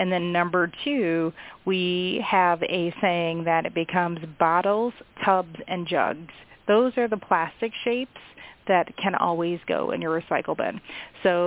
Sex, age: female, 30-49